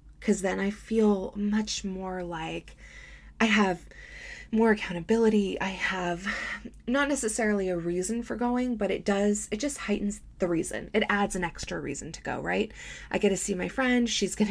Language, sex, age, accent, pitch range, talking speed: English, female, 20-39, American, 180-230 Hz, 180 wpm